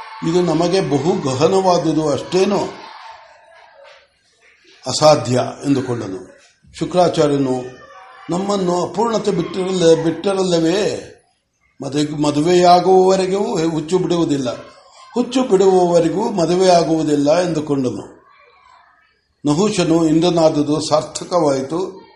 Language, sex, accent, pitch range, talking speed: Kannada, male, native, 145-185 Hz, 60 wpm